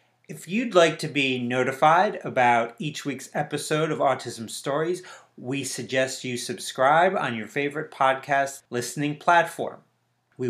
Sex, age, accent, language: male, 30-49, American, English